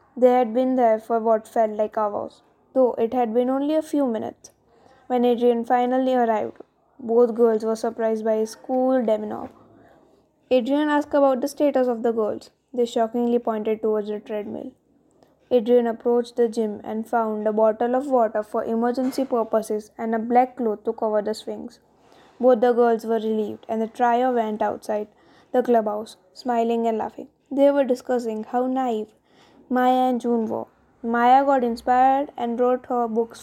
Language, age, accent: English, 20-39, Indian